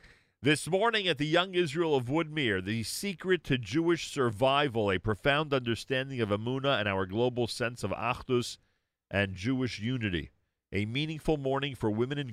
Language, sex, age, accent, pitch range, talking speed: English, male, 40-59, American, 90-120 Hz, 160 wpm